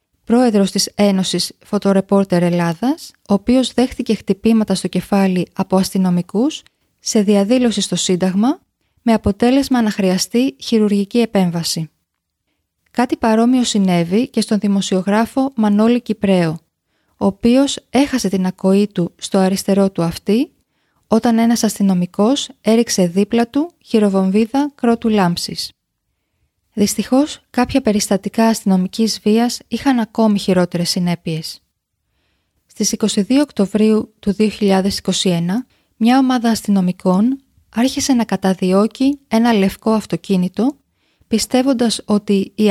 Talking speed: 105 wpm